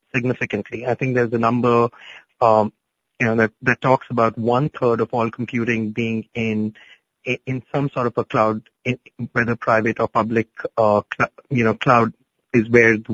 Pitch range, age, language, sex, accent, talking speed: 115-135 Hz, 30-49, English, male, Indian, 175 wpm